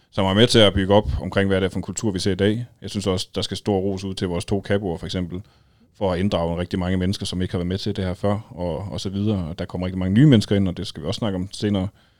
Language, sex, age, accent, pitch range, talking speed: Danish, male, 30-49, native, 95-105 Hz, 330 wpm